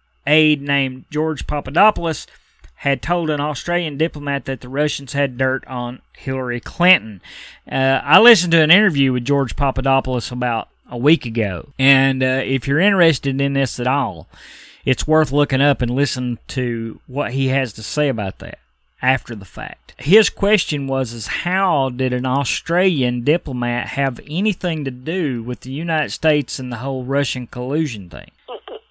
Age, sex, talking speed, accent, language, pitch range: 30-49, male, 160 wpm, American, English, 125-160 Hz